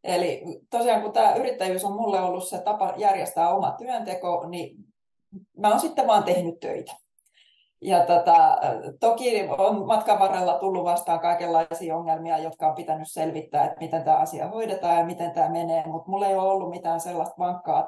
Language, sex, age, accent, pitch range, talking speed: Finnish, female, 20-39, native, 170-205 Hz, 170 wpm